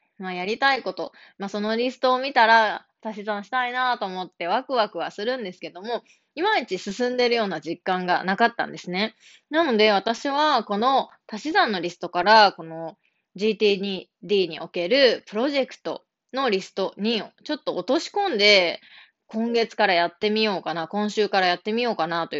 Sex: female